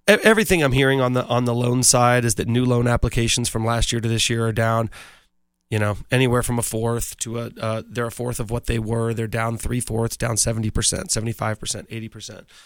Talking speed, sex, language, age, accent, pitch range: 235 wpm, male, English, 30-49, American, 115-130 Hz